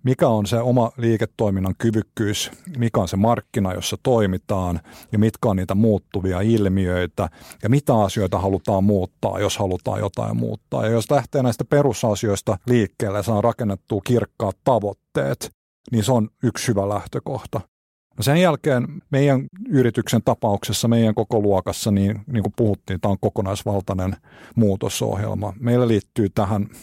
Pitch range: 100-120 Hz